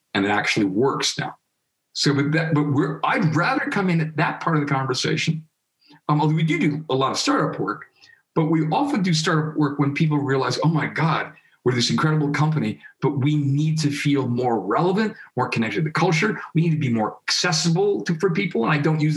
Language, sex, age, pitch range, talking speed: English, male, 50-69, 140-160 Hz, 220 wpm